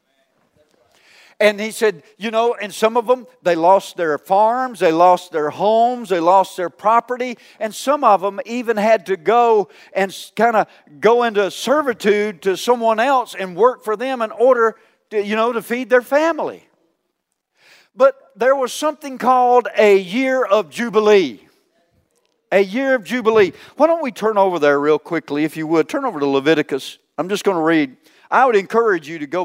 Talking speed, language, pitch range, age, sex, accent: 185 wpm, English, 180-235 Hz, 50-69, male, American